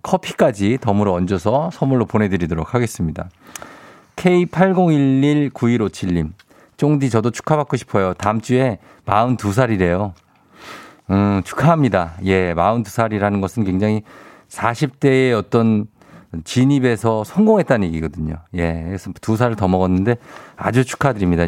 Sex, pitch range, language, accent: male, 100-150 Hz, Korean, native